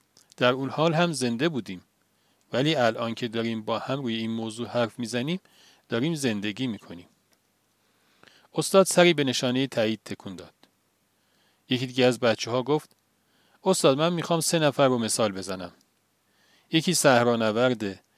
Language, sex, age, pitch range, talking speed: Persian, male, 40-59, 115-155 Hz, 140 wpm